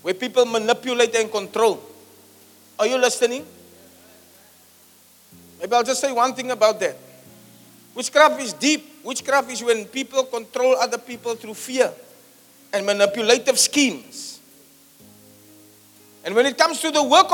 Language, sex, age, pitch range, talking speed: English, male, 50-69, 235-320 Hz, 130 wpm